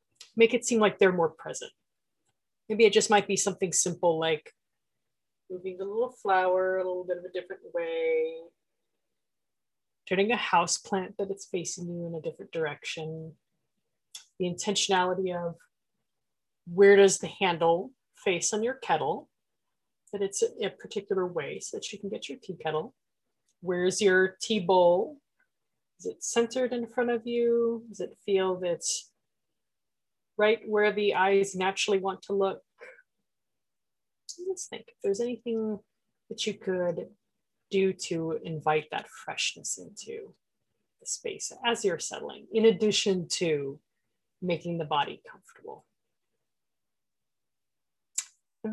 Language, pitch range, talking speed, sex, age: English, 185-255 Hz, 140 wpm, female, 30-49